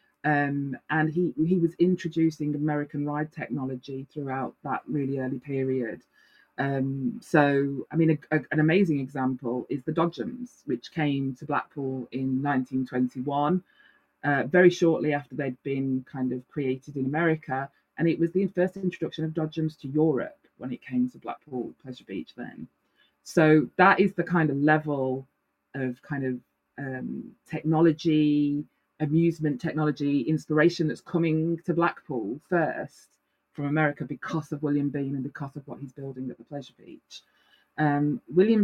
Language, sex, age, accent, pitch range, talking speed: English, female, 20-39, British, 135-160 Hz, 150 wpm